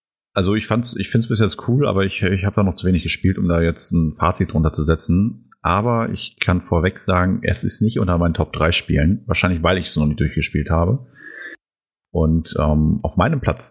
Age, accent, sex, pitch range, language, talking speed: 30-49, German, male, 85-110 Hz, German, 215 wpm